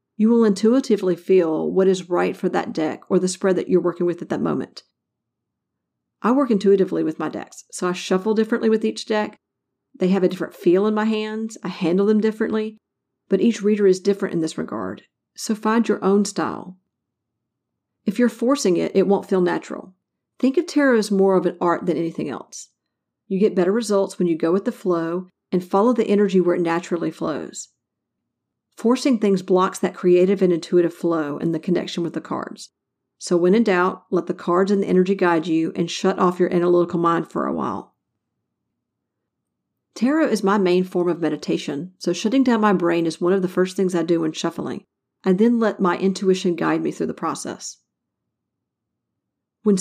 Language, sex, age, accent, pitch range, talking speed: English, female, 40-59, American, 175-210 Hz, 195 wpm